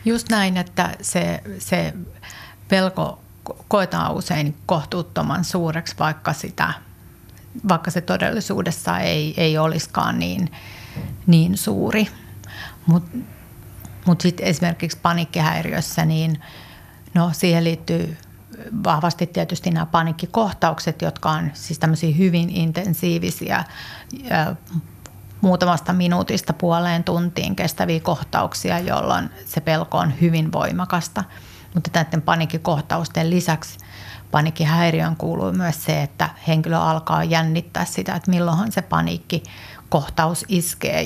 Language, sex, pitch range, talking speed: Finnish, female, 155-175 Hz, 105 wpm